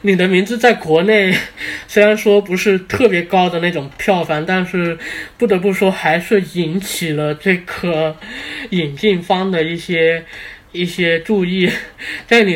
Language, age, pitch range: Chinese, 20-39, 160-205 Hz